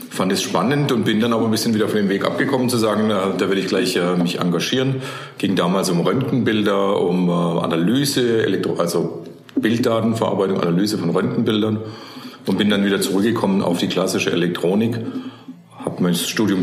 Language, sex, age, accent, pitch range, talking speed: German, male, 50-69, German, 85-110 Hz, 160 wpm